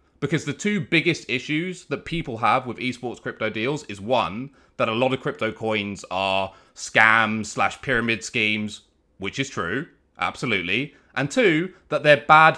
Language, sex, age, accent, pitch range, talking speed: English, male, 30-49, British, 115-155 Hz, 160 wpm